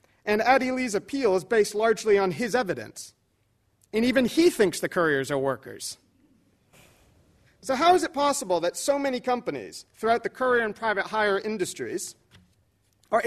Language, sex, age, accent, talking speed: English, male, 40-59, American, 160 wpm